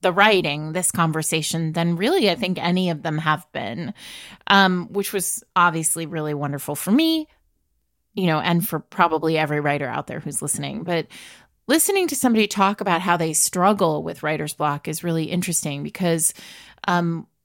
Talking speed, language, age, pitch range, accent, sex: 170 wpm, English, 30-49, 165-230 Hz, American, female